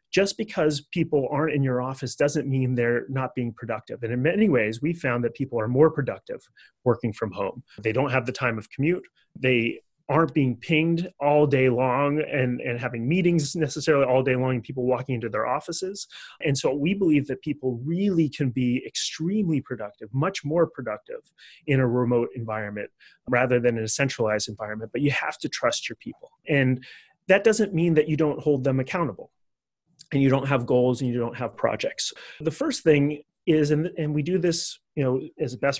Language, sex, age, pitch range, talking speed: English, male, 30-49, 125-155 Hz, 200 wpm